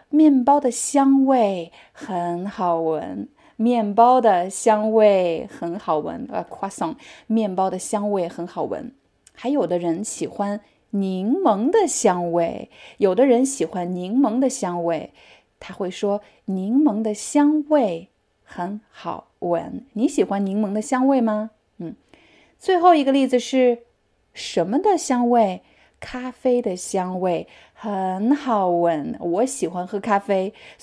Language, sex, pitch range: Chinese, female, 180-250 Hz